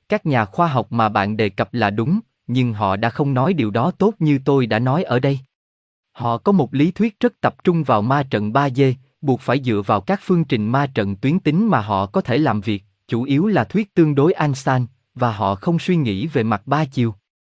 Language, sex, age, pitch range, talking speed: Vietnamese, male, 20-39, 110-160 Hz, 240 wpm